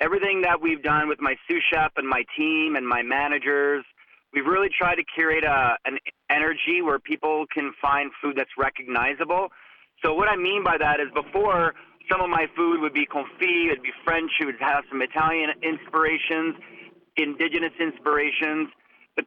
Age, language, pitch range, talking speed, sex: 30-49, English, 145-175 Hz, 180 wpm, male